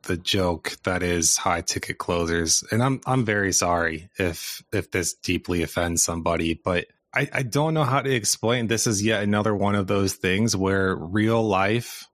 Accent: American